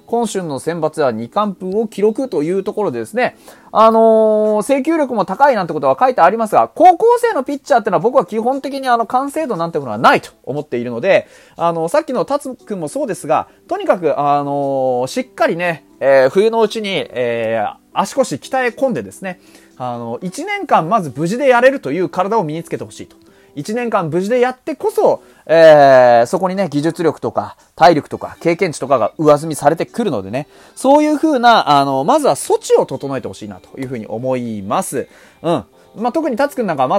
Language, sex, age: Japanese, male, 30-49